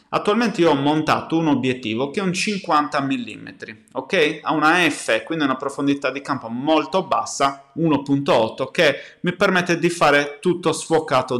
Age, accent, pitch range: 20-39, native, 125-160 Hz